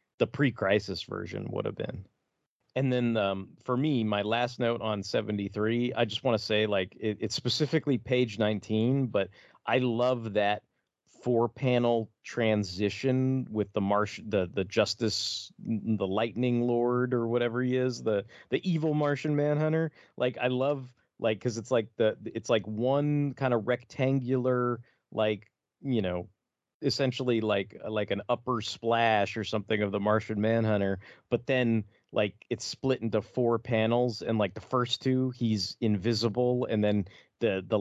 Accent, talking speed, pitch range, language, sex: American, 160 wpm, 105-125 Hz, English, male